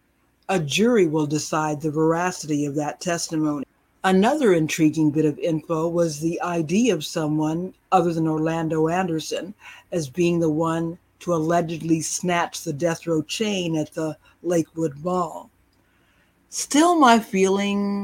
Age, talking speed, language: 60-79, 135 wpm, English